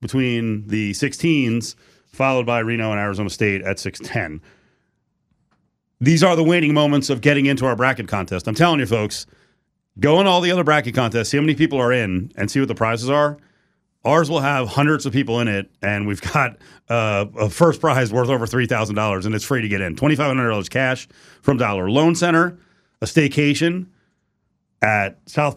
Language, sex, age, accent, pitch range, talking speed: English, male, 40-59, American, 110-145 Hz, 195 wpm